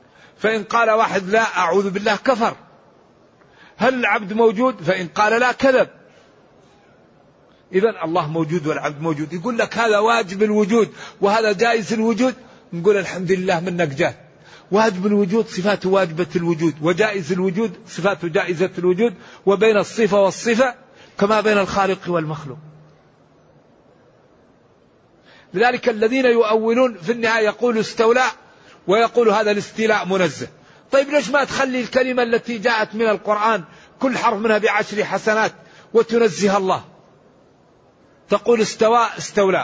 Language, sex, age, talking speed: Arabic, male, 50-69, 120 wpm